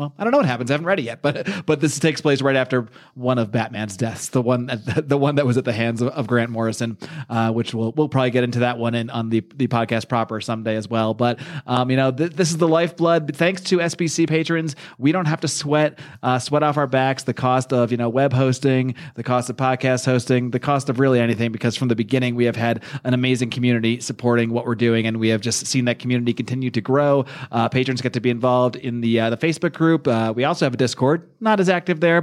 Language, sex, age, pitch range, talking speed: English, male, 30-49, 120-155 Hz, 260 wpm